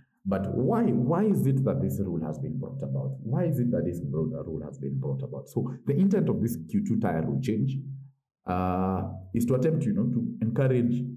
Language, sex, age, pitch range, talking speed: English, male, 50-69, 85-135 Hz, 215 wpm